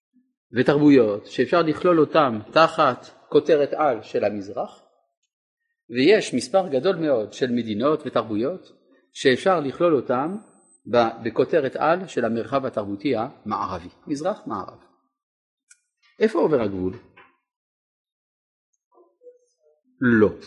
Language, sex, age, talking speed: Hebrew, male, 50-69, 90 wpm